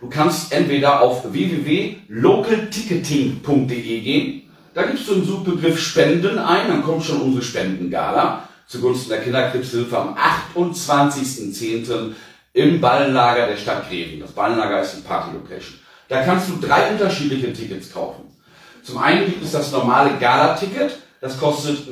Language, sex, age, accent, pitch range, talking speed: German, male, 40-59, German, 125-170 Hz, 135 wpm